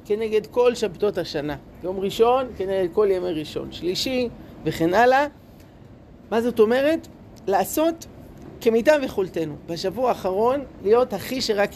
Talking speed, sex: 120 wpm, male